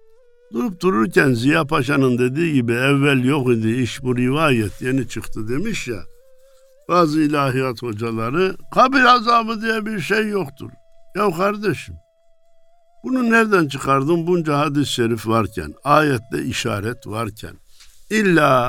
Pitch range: 135-210 Hz